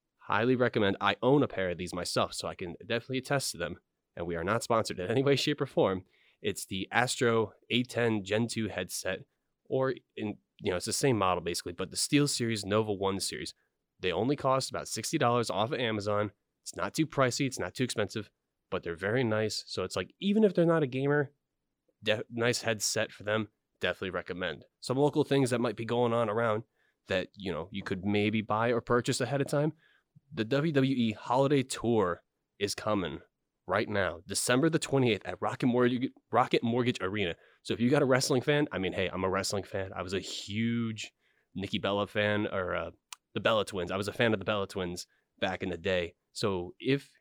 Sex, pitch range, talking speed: male, 105-130 Hz, 205 wpm